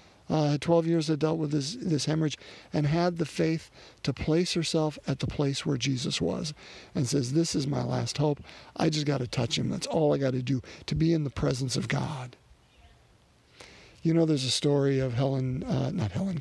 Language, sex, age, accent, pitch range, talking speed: English, male, 50-69, American, 125-155 Hz, 210 wpm